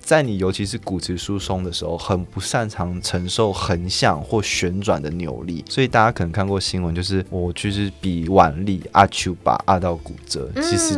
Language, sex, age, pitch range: Chinese, male, 20-39, 90-105 Hz